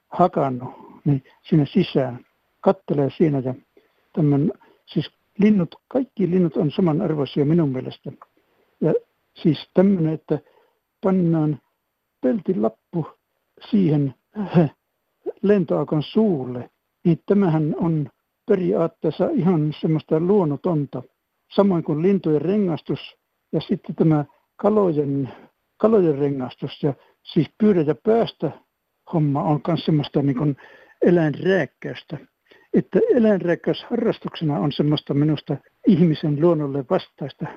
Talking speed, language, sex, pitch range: 95 wpm, Finnish, male, 150-200 Hz